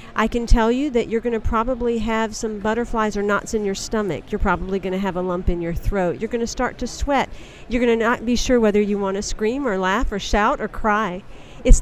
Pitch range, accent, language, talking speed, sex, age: 195-240 Hz, American, English, 260 wpm, female, 50-69